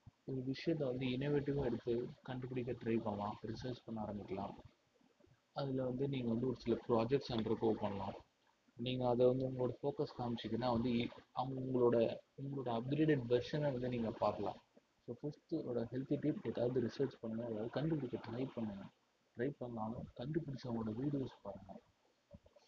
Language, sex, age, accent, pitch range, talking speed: Tamil, male, 30-49, native, 115-140 Hz, 135 wpm